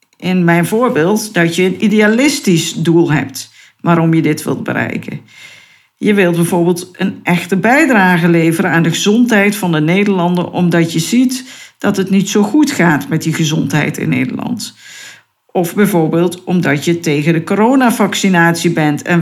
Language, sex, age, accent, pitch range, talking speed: Dutch, female, 50-69, Dutch, 170-225 Hz, 155 wpm